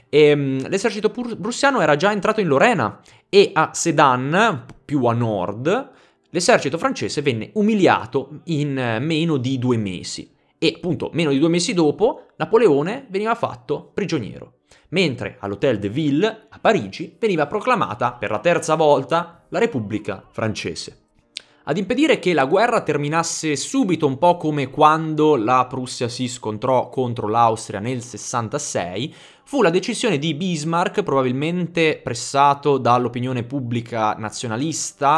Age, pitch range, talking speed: 20-39, 120-165 Hz, 135 wpm